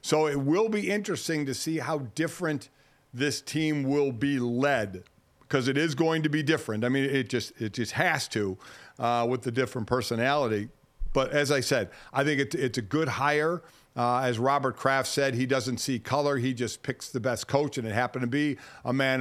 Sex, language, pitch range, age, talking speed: male, English, 130-155 Hz, 50-69, 210 wpm